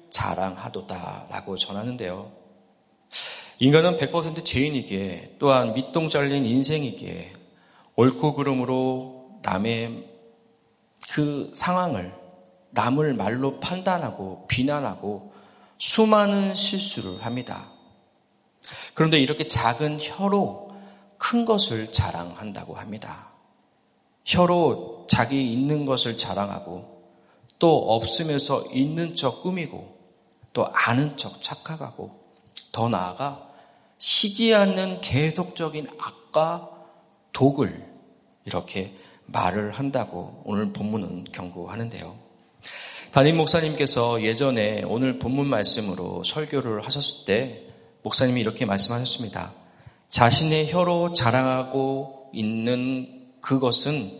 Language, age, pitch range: Korean, 40-59, 105-155 Hz